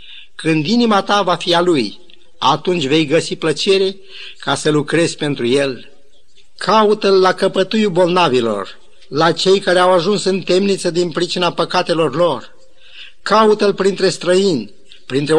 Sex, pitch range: male, 145-190 Hz